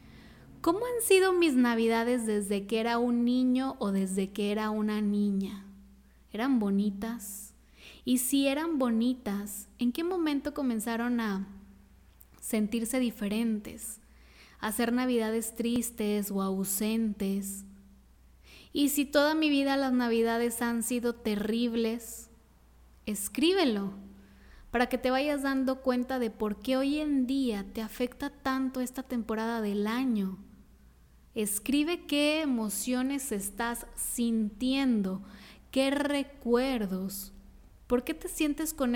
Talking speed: 115 wpm